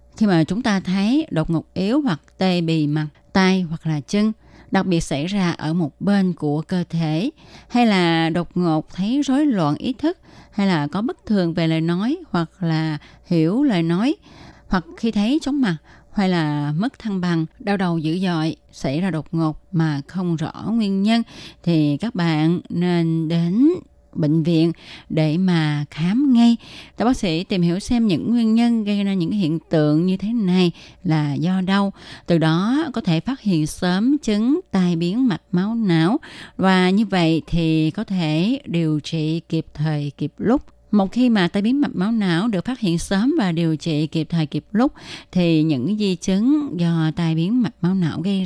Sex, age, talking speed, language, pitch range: female, 20-39, 195 wpm, Vietnamese, 160-215 Hz